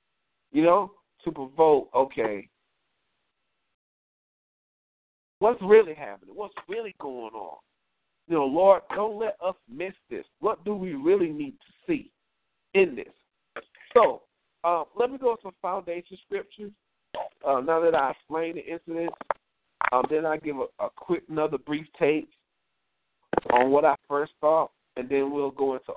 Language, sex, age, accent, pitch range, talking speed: English, male, 50-69, American, 135-215 Hz, 150 wpm